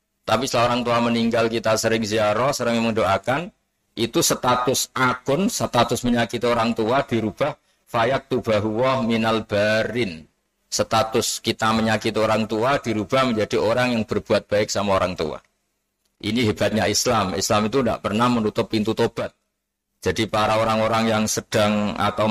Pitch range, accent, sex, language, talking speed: 105-115 Hz, native, male, Indonesian, 135 wpm